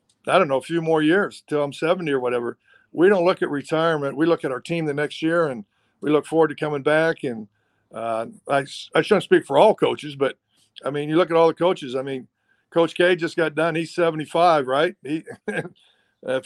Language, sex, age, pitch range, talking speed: English, male, 50-69, 135-170 Hz, 225 wpm